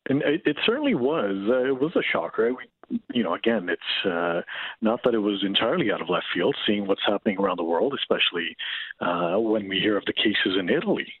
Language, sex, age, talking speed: English, male, 40-59, 225 wpm